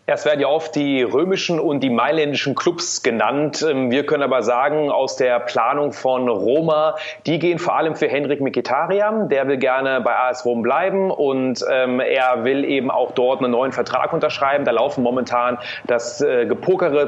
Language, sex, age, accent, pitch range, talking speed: German, male, 30-49, German, 125-165 Hz, 170 wpm